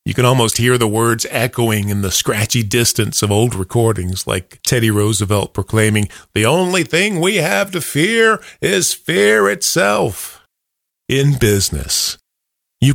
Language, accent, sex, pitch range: English, American, male, 105-140 Hz